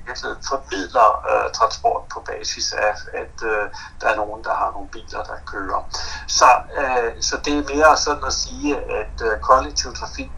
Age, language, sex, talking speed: 60-79, Danish, male, 175 wpm